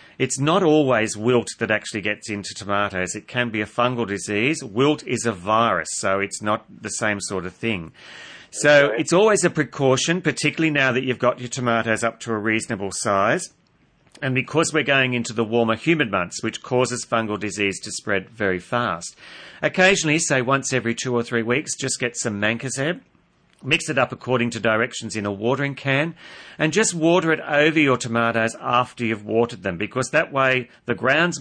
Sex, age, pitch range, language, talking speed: male, 40-59, 105-135 Hz, English, 190 wpm